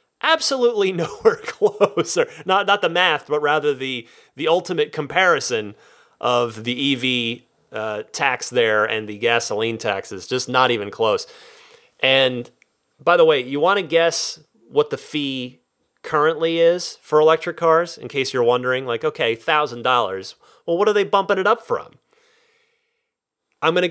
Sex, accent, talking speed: male, American, 155 wpm